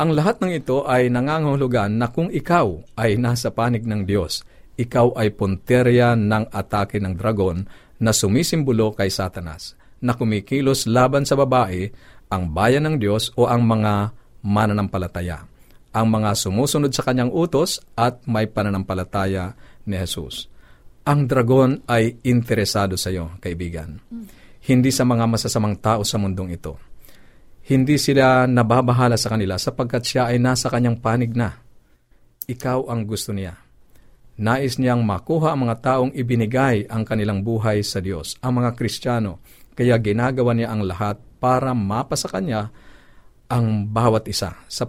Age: 50-69